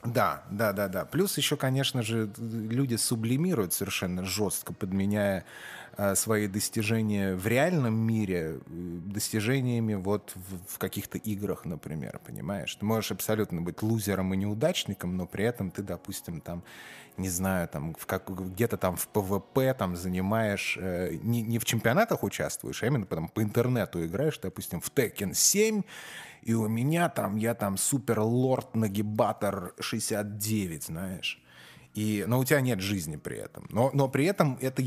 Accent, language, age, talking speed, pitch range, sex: native, Russian, 20-39, 150 wpm, 95-120 Hz, male